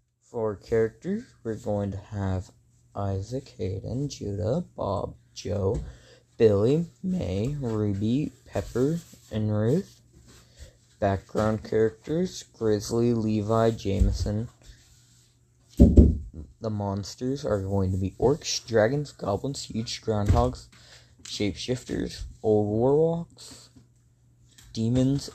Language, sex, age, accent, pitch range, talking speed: English, male, 20-39, American, 105-120 Hz, 90 wpm